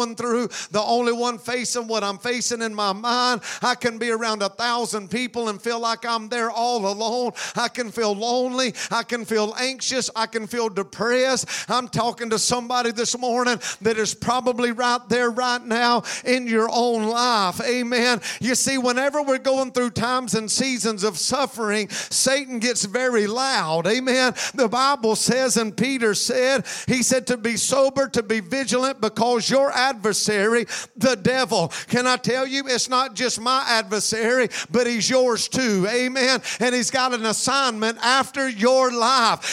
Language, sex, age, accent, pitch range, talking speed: English, male, 50-69, American, 225-260 Hz, 170 wpm